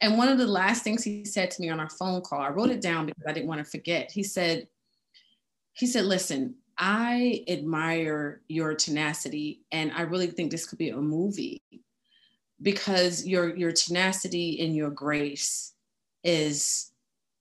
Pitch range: 160-210 Hz